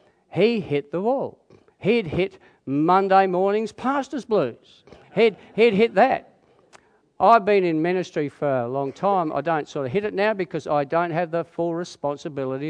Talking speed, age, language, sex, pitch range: 170 wpm, 50-69, English, male, 140-205 Hz